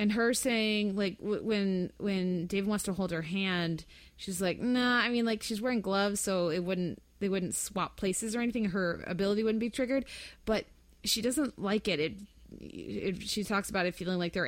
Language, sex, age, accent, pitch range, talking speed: English, female, 20-39, American, 170-220 Hz, 205 wpm